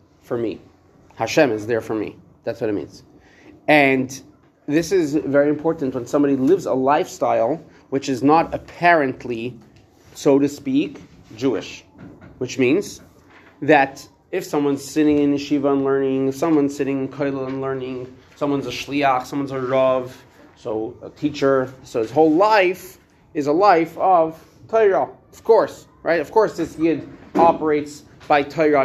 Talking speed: 150 wpm